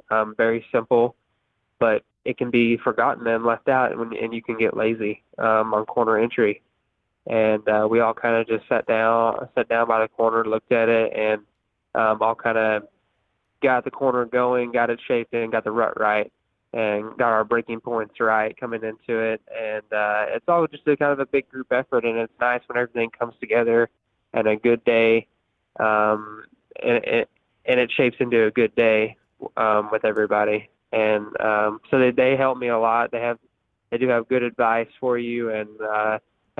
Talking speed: 195 wpm